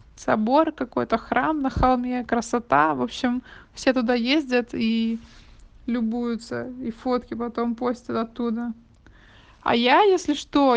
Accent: native